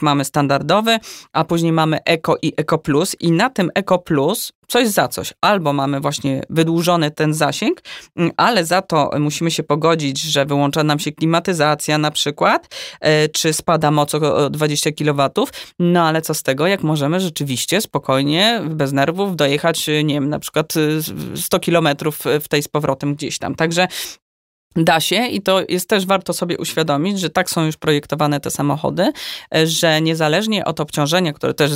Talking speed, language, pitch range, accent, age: 170 wpm, Polish, 145-170 Hz, native, 20-39